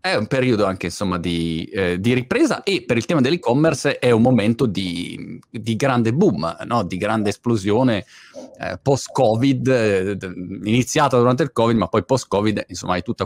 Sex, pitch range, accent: male, 100-130 Hz, native